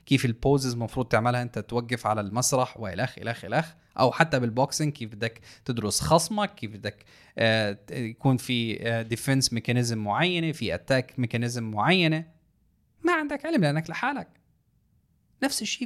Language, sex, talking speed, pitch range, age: Arabic, male, 145 wpm, 115-165 Hz, 20-39